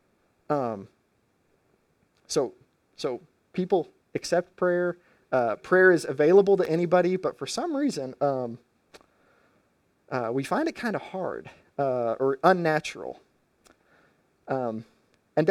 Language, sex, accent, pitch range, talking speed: English, male, American, 125-165 Hz, 110 wpm